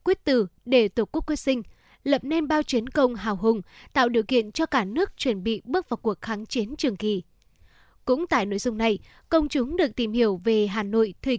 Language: Vietnamese